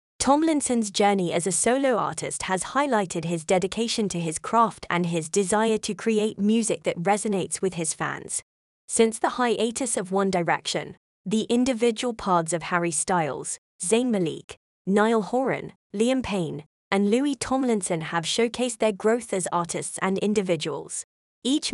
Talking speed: 150 wpm